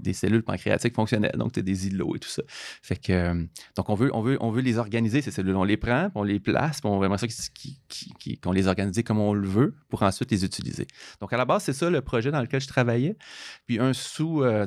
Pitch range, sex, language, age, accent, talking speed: 95-125 Hz, male, French, 30-49, Canadian, 255 wpm